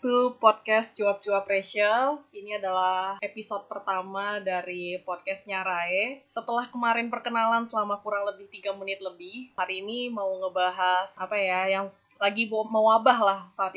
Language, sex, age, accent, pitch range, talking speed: Indonesian, female, 20-39, native, 195-245 Hz, 135 wpm